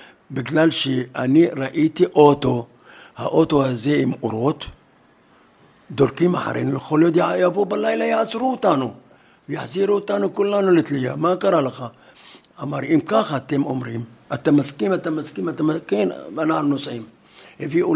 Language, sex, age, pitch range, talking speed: Hebrew, male, 60-79, 130-165 Hz, 120 wpm